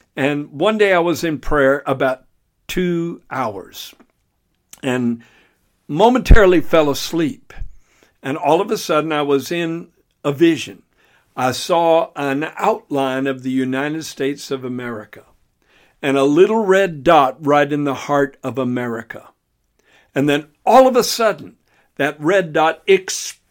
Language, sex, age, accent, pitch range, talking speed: English, male, 60-79, American, 135-180 Hz, 140 wpm